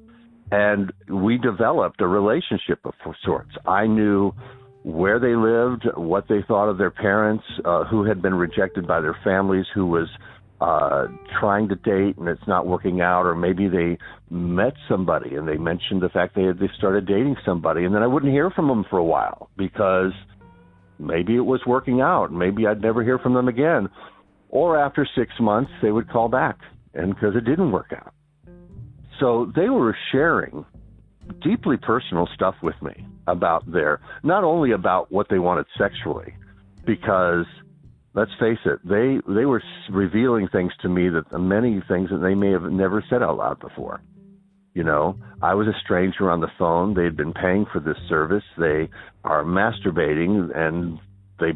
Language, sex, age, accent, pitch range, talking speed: English, male, 50-69, American, 90-115 Hz, 175 wpm